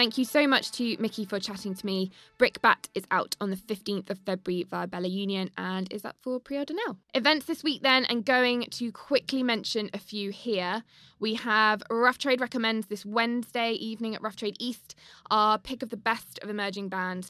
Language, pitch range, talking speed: English, 190-230 Hz, 205 wpm